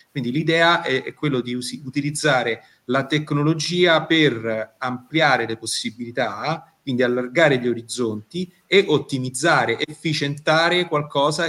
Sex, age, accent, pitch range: male, 30-49, native, 120-150 Hz